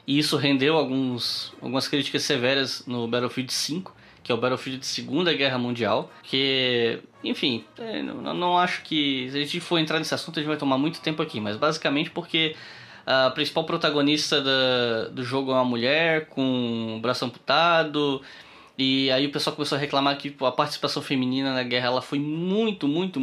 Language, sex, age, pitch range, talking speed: Portuguese, male, 10-29, 125-150 Hz, 185 wpm